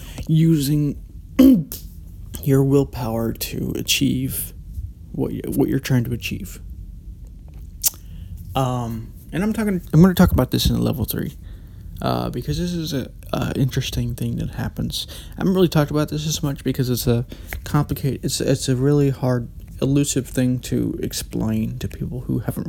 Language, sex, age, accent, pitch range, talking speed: English, male, 20-39, American, 85-135 Hz, 155 wpm